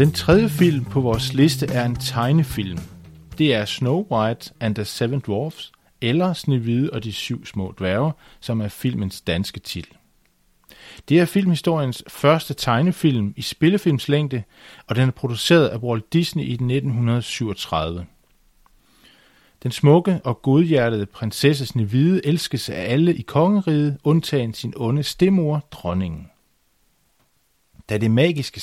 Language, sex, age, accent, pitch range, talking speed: Danish, male, 40-59, native, 105-155 Hz, 130 wpm